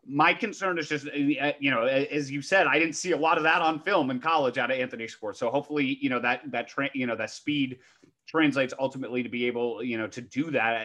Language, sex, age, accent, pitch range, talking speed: English, male, 30-49, American, 115-145 Hz, 245 wpm